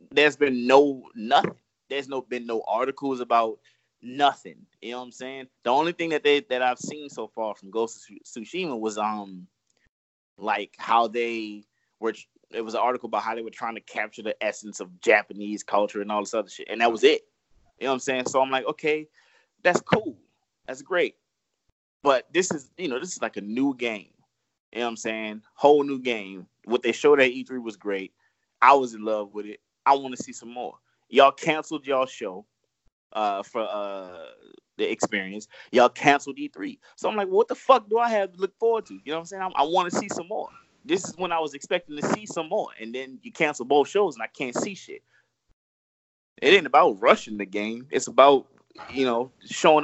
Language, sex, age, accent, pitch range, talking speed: English, male, 20-39, American, 110-155 Hz, 220 wpm